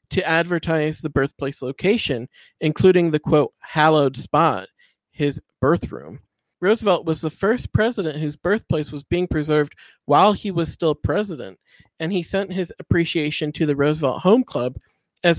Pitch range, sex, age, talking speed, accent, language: 145-180 Hz, male, 40-59, 150 wpm, American, English